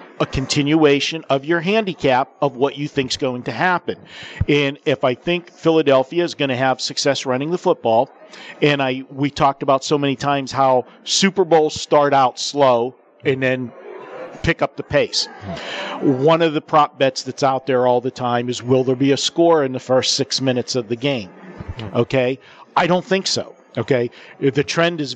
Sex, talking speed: male, 190 wpm